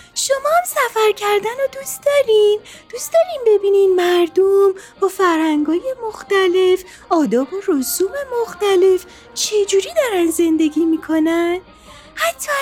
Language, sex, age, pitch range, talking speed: Persian, female, 30-49, 320-420 Hz, 110 wpm